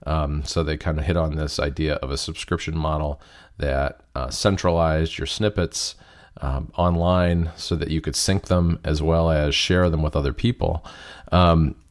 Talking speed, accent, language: 175 wpm, American, English